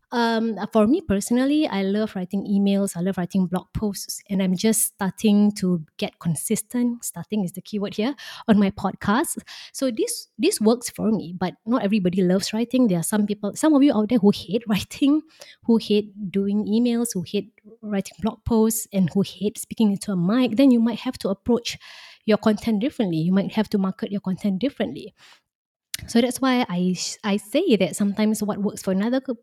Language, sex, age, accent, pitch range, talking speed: English, female, 20-39, Malaysian, 195-245 Hz, 195 wpm